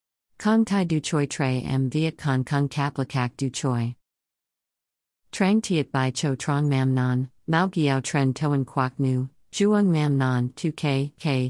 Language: Vietnamese